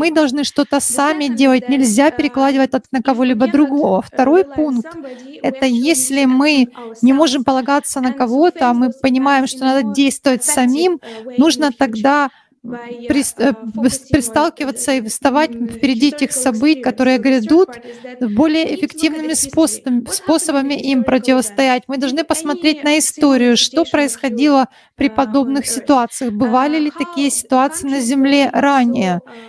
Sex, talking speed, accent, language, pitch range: female, 125 wpm, native, Russian, 255-295 Hz